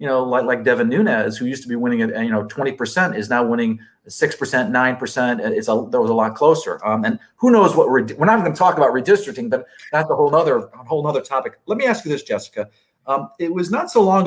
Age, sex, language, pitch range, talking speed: 40-59, male, English, 125-205 Hz, 270 wpm